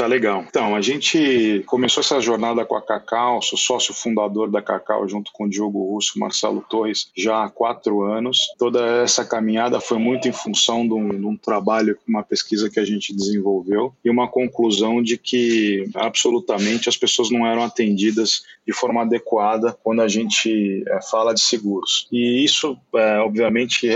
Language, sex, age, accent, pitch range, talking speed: Portuguese, male, 20-39, Brazilian, 105-120 Hz, 175 wpm